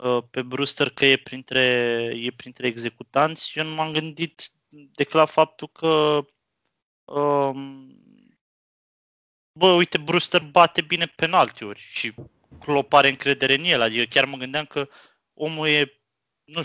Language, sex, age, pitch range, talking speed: Romanian, male, 20-39, 130-170 Hz, 135 wpm